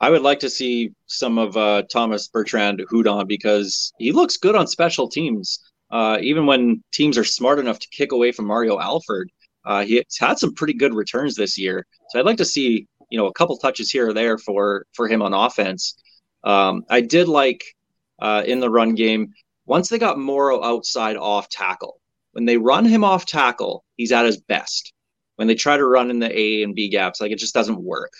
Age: 30-49